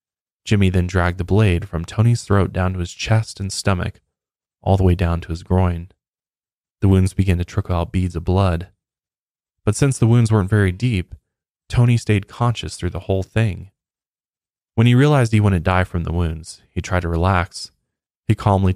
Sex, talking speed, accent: male, 190 wpm, American